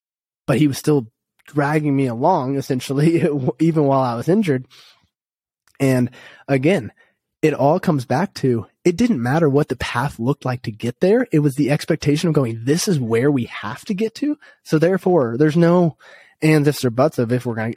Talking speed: 195 wpm